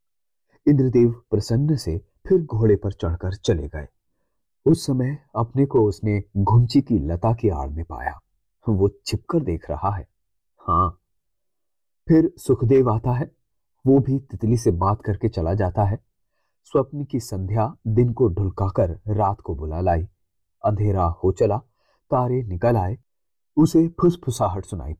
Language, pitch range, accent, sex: Hindi, 95-135 Hz, native, male